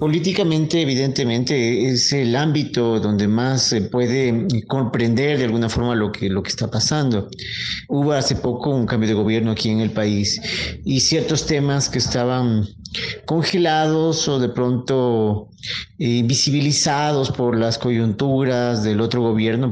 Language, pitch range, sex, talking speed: Spanish, 115-145 Hz, male, 145 wpm